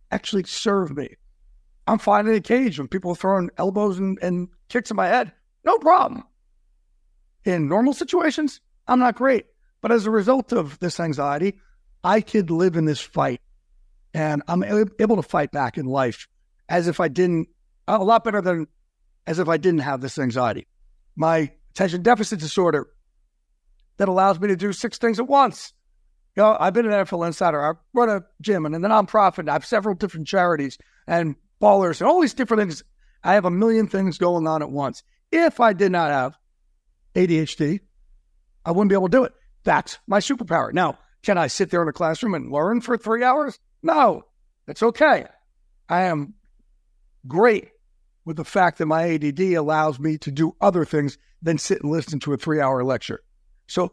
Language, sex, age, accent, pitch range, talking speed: English, male, 60-79, American, 155-215 Hz, 190 wpm